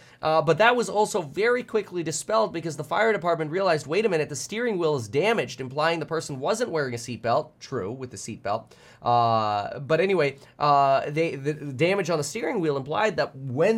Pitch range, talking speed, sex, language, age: 125-165 Hz, 200 wpm, male, English, 20-39